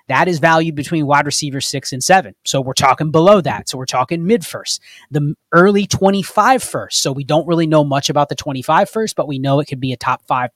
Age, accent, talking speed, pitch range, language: 20-39, American, 240 wpm, 135-170 Hz, English